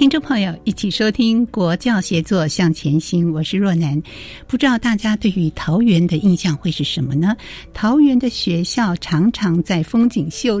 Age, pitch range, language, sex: 60-79, 170-225 Hz, Chinese, female